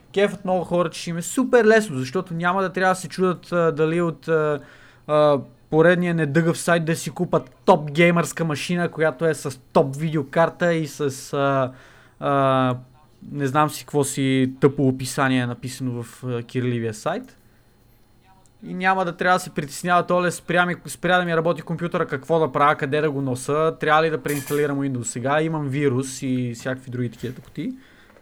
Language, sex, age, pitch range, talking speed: Bulgarian, male, 20-39, 130-175 Hz, 175 wpm